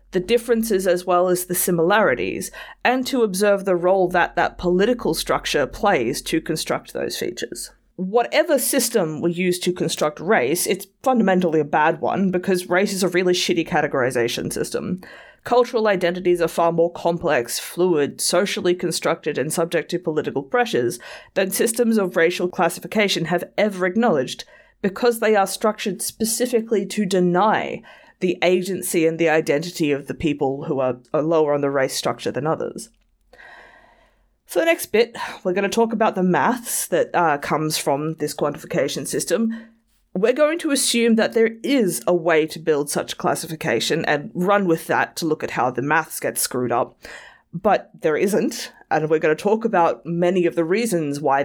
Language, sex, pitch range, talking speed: English, female, 160-215 Hz, 170 wpm